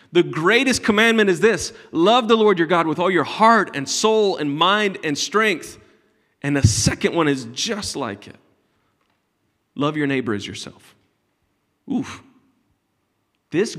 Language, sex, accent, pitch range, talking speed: English, male, American, 135-180 Hz, 150 wpm